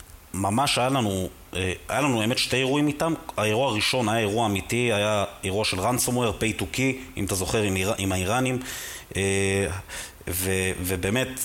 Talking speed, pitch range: 145 wpm, 95-125 Hz